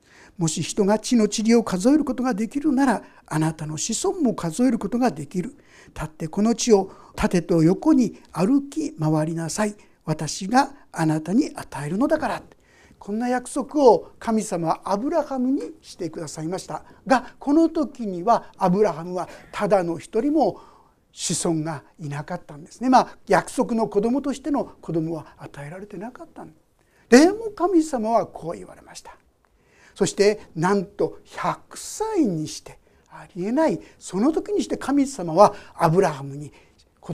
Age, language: 60-79, Japanese